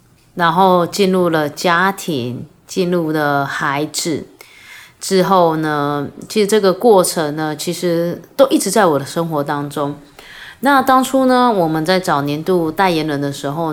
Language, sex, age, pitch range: Chinese, female, 30-49, 150-195 Hz